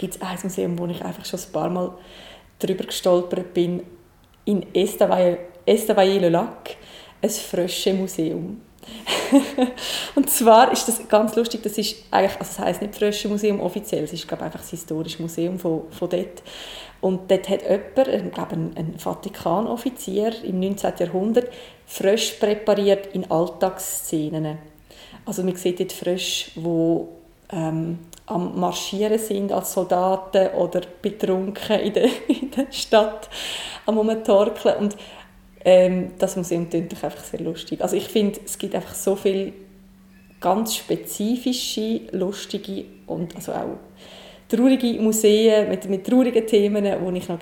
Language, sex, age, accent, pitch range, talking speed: German, female, 30-49, Swiss, 180-210 Hz, 140 wpm